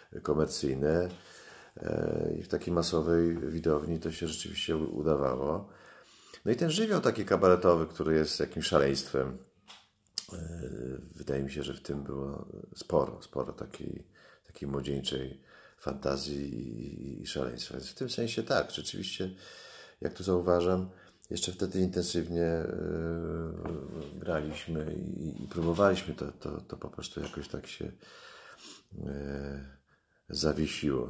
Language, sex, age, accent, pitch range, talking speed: Polish, male, 40-59, native, 70-90 Hz, 115 wpm